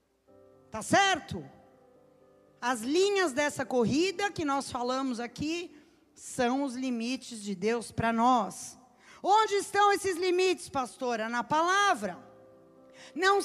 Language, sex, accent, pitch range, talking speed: Portuguese, female, Brazilian, 260-375 Hz, 110 wpm